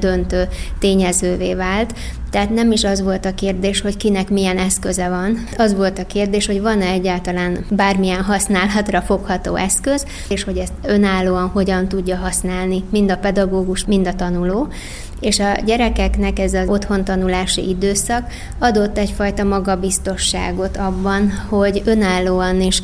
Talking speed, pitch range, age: 140 wpm, 185-205 Hz, 20-39